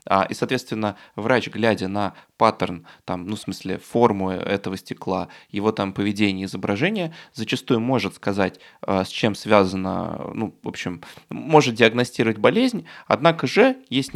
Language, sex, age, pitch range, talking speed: Russian, male, 20-39, 100-130 Hz, 135 wpm